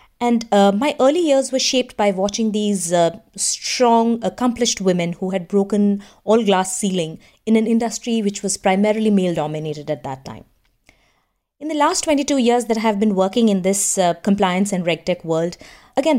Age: 30-49